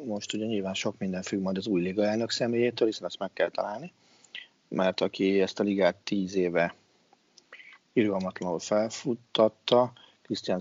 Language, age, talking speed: Hungarian, 40-59, 155 wpm